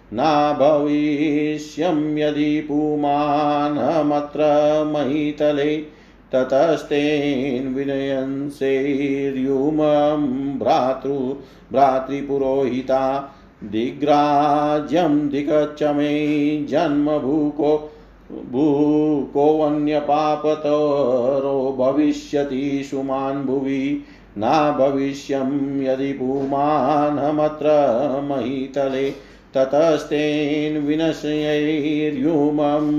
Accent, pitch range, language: native, 135-150 Hz, Hindi